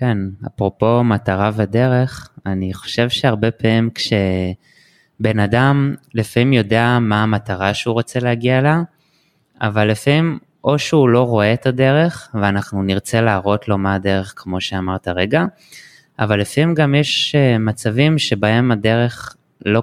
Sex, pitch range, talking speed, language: male, 100-130 Hz, 130 wpm, Hebrew